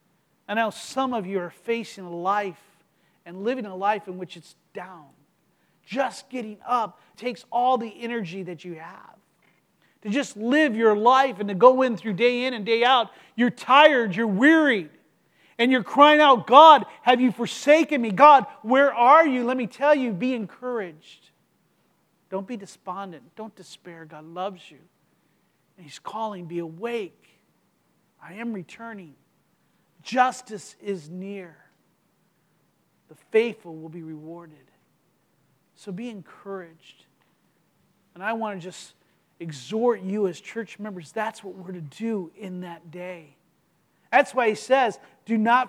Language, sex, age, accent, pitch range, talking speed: English, male, 40-59, American, 185-250 Hz, 150 wpm